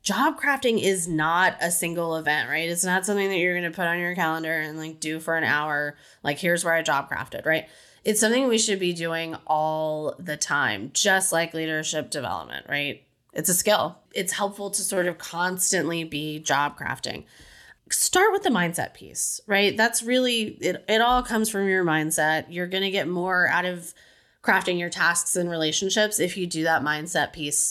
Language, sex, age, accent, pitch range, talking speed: English, female, 20-39, American, 160-210 Hz, 195 wpm